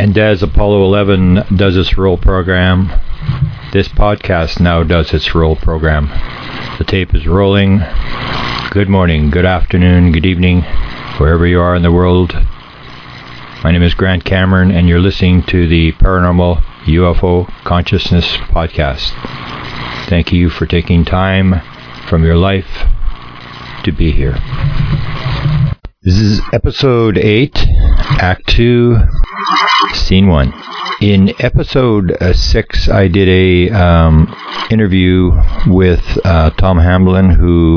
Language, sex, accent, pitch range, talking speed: English, male, American, 85-95 Hz, 120 wpm